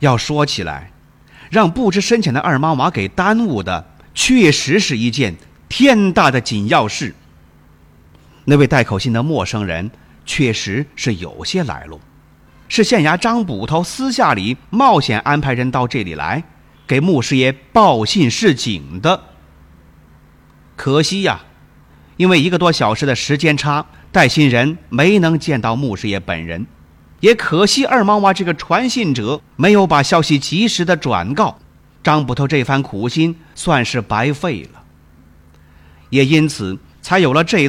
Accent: native